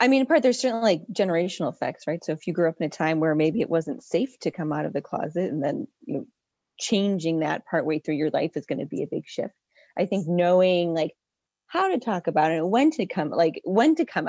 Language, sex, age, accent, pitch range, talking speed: English, female, 30-49, American, 165-215 Hz, 255 wpm